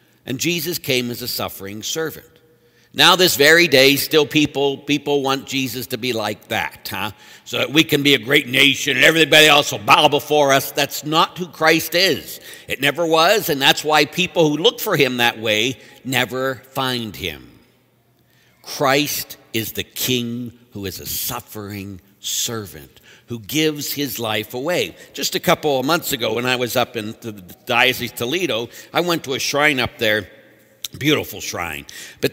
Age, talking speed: 60-79, 175 wpm